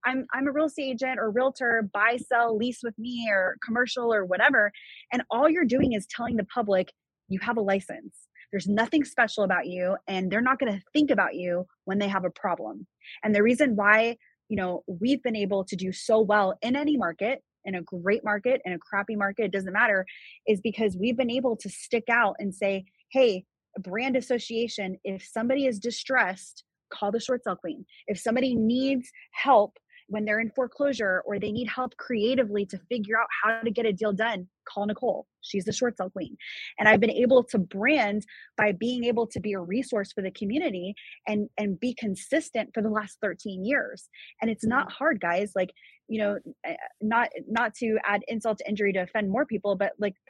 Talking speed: 205 wpm